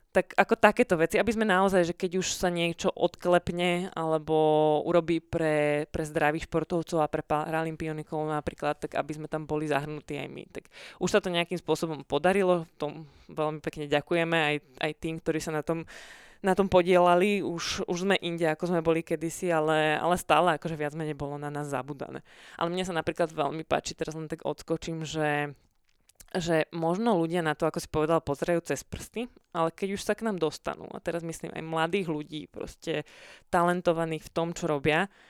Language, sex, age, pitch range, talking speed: Slovak, female, 20-39, 155-175 Hz, 190 wpm